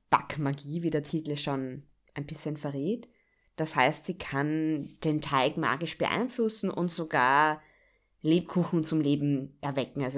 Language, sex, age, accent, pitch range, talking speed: German, female, 20-39, German, 160-200 Hz, 135 wpm